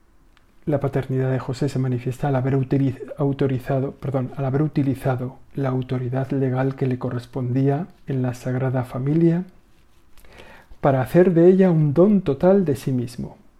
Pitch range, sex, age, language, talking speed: 125-150 Hz, male, 50-69, Spanish, 130 wpm